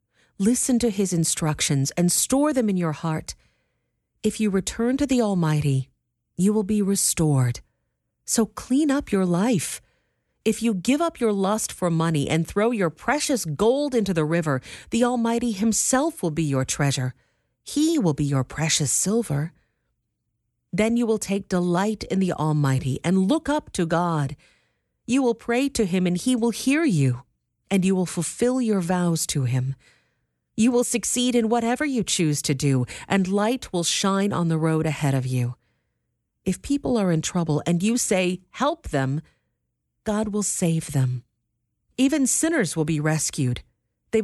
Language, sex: English, female